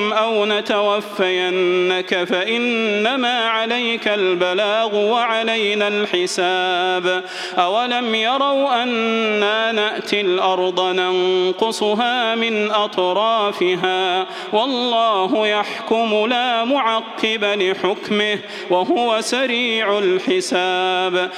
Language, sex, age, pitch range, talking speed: Arabic, male, 30-49, 185-240 Hz, 65 wpm